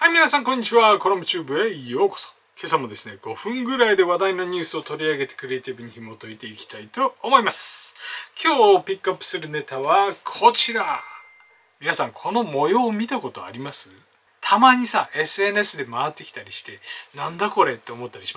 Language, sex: Japanese, male